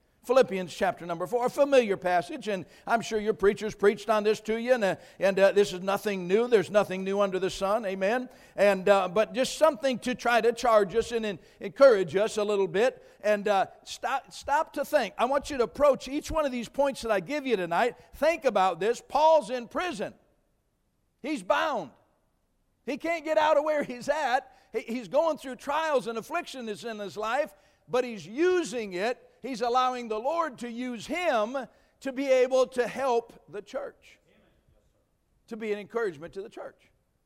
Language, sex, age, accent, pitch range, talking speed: English, male, 60-79, American, 195-260 Hz, 195 wpm